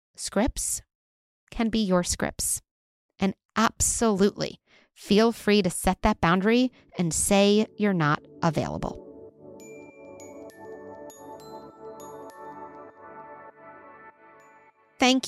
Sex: female